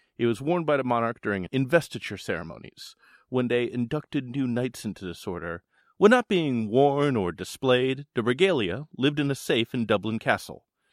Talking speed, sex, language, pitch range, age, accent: 175 wpm, male, English, 110-160 Hz, 30-49, American